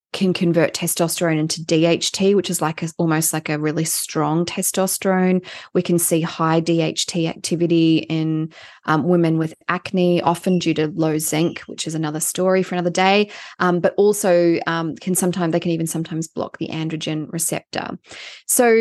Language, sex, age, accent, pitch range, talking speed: English, female, 20-39, Australian, 160-185 Hz, 170 wpm